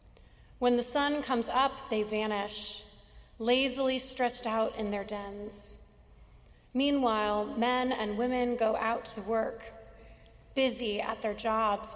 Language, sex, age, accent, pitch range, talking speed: English, female, 30-49, American, 210-245 Hz, 125 wpm